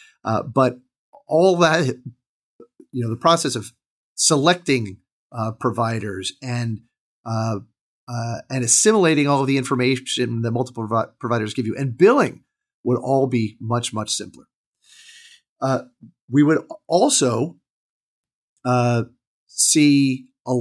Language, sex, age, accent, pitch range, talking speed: English, male, 40-59, American, 115-145 Hz, 120 wpm